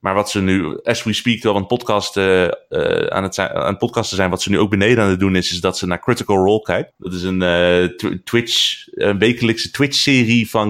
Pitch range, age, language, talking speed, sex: 95-115 Hz, 30-49, Dutch, 235 wpm, male